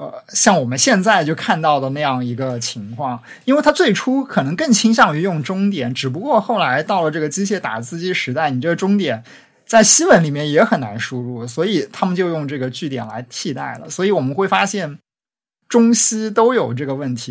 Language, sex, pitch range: Chinese, male, 130-195 Hz